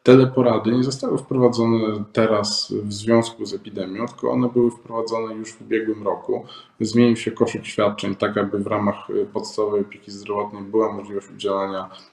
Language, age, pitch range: Polish, 20-39, 105-125 Hz